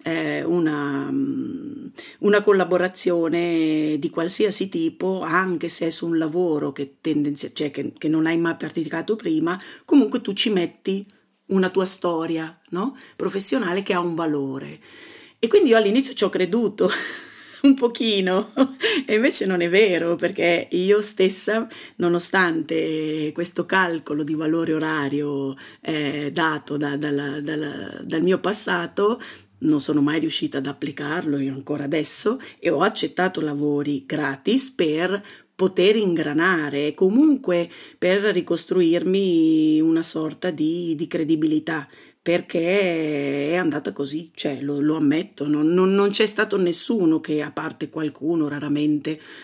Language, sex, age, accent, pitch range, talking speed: Italian, female, 40-59, native, 150-190 Hz, 135 wpm